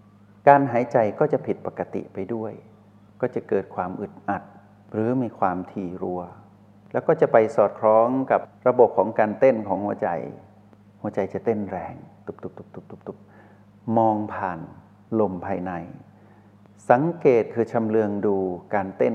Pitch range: 95-110 Hz